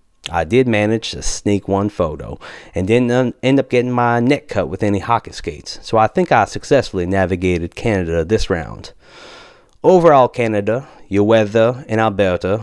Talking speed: 160 wpm